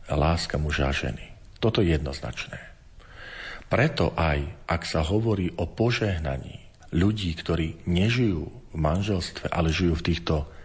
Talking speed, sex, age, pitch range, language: 130 wpm, male, 40-59, 80-95 Hz, Slovak